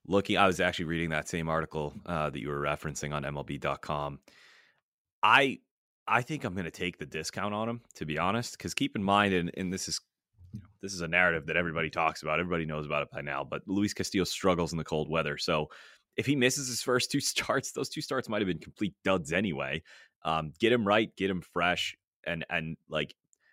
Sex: male